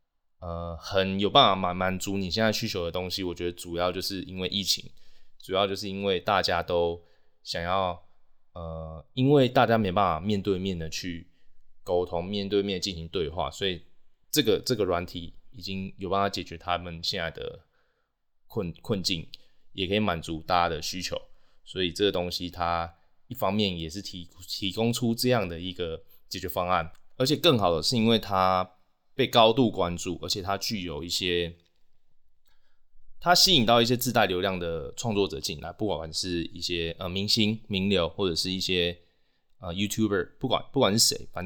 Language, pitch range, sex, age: Chinese, 85-100 Hz, male, 20-39